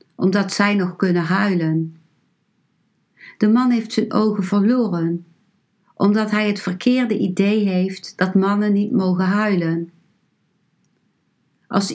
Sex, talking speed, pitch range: female, 115 wpm, 180-220 Hz